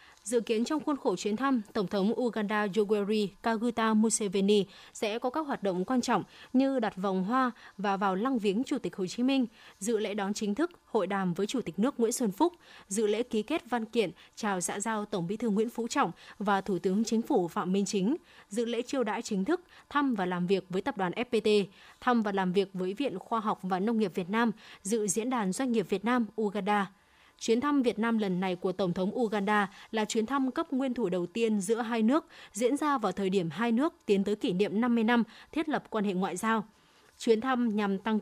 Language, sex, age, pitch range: Vietnamese, female, 20-39, 200-245 Hz